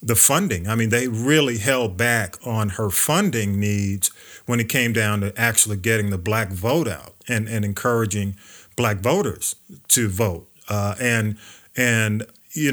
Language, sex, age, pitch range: English, male, 40-59, 105-125 Hz